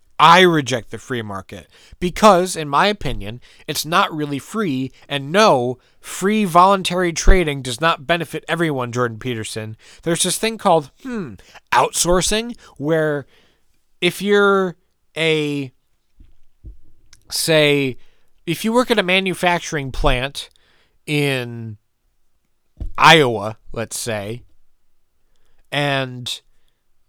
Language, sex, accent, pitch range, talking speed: English, male, American, 125-185 Hz, 105 wpm